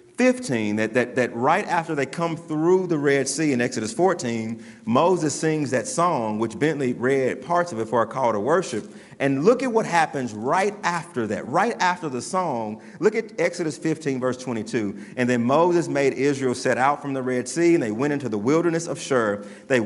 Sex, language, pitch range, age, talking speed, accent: male, English, 130-185 Hz, 40-59, 205 wpm, American